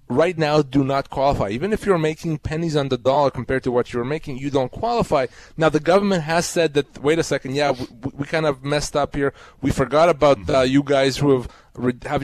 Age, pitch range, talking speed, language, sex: 30-49, 130-165 Hz, 230 wpm, English, male